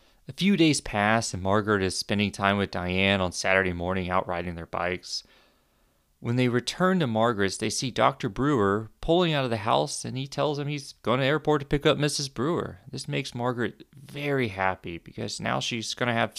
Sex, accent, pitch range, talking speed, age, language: male, American, 100-125 Hz, 210 wpm, 30-49, English